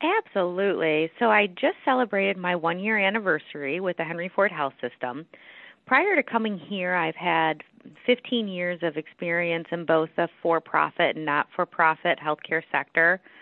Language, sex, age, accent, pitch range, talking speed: English, female, 30-49, American, 145-190 Hz, 145 wpm